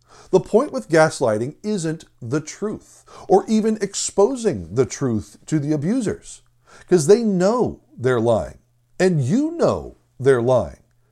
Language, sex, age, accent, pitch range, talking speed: English, male, 60-79, American, 120-180 Hz, 135 wpm